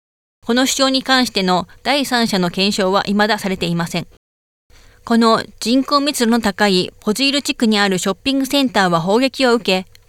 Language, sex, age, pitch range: Japanese, female, 20-39, 185-245 Hz